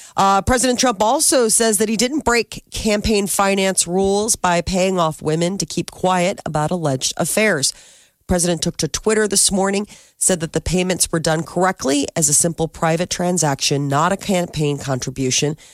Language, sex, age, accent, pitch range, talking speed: English, female, 40-59, American, 150-200 Hz, 170 wpm